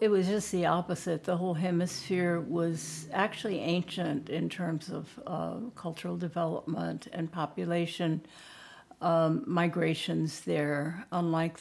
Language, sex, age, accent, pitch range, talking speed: English, female, 60-79, American, 155-180 Hz, 120 wpm